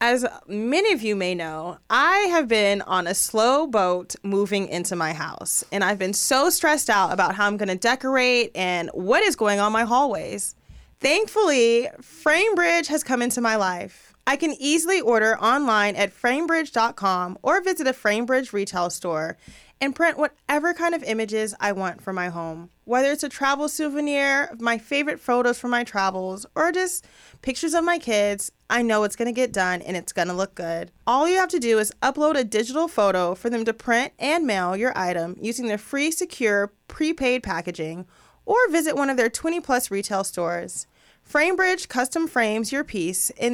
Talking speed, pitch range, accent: 185 wpm, 195-290 Hz, American